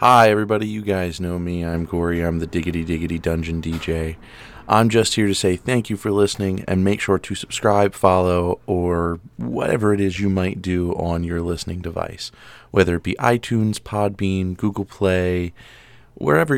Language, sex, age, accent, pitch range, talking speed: English, male, 30-49, American, 90-105 Hz, 175 wpm